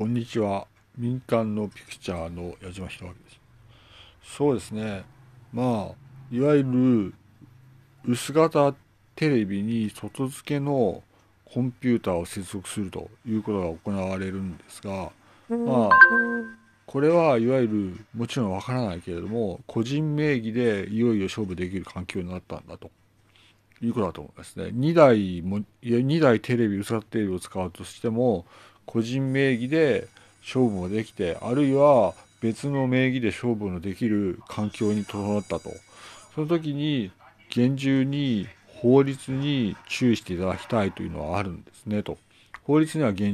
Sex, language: male, Japanese